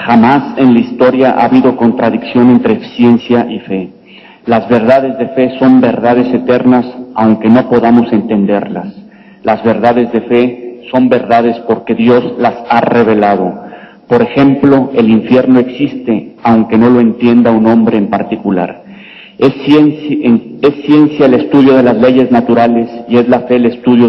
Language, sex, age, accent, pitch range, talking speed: Spanish, male, 50-69, Mexican, 115-130 Hz, 150 wpm